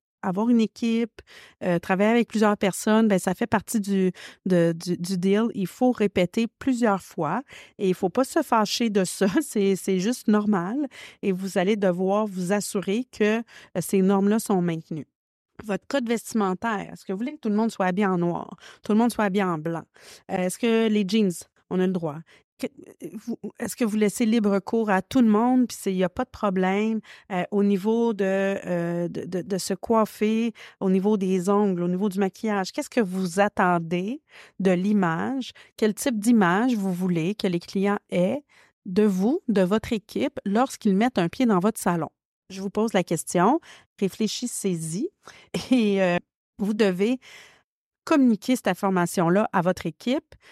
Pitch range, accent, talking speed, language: 185-225 Hz, Canadian, 175 wpm, French